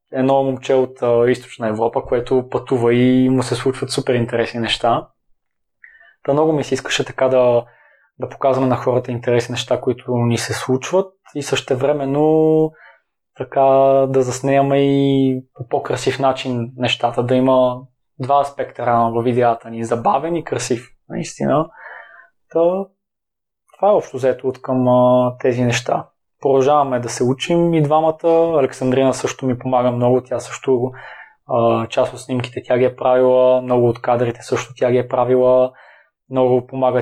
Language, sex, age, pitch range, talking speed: Bulgarian, male, 20-39, 120-135 Hz, 155 wpm